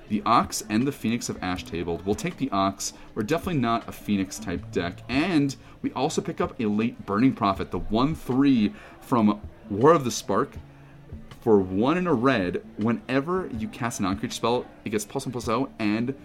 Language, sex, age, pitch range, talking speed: English, male, 30-49, 95-125 Hz, 190 wpm